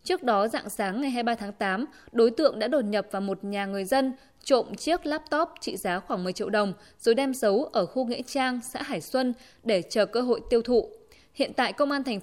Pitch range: 210-270 Hz